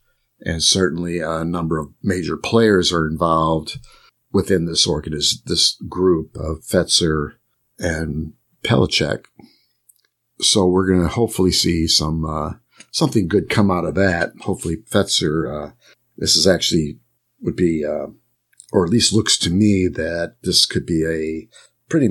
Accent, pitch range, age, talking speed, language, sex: American, 75-90 Hz, 50-69, 145 wpm, English, male